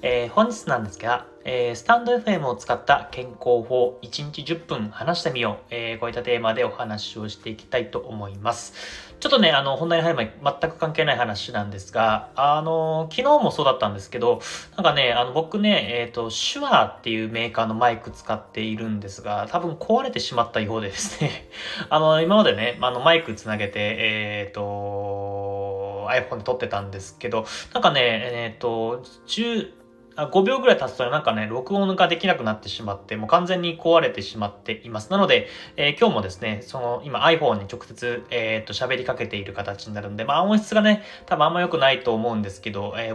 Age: 20-39